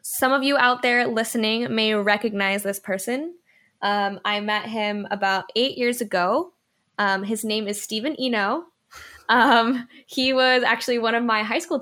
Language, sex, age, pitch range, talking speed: English, female, 10-29, 195-235 Hz, 170 wpm